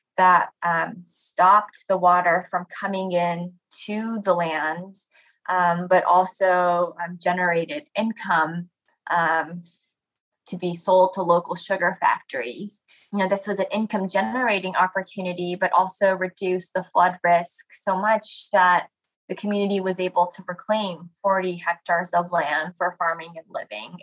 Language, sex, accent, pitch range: English, female, American, 170-190 Hz